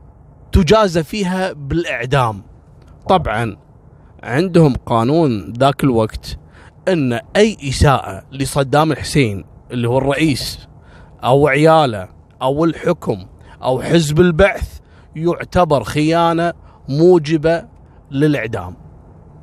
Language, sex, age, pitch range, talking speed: Arabic, male, 30-49, 115-185 Hz, 75 wpm